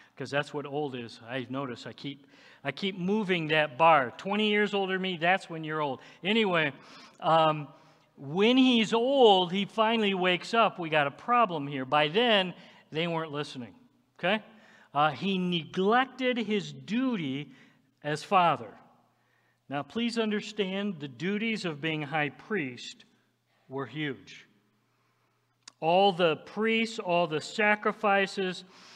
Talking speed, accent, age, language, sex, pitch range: 140 wpm, American, 50-69, English, male, 150-205 Hz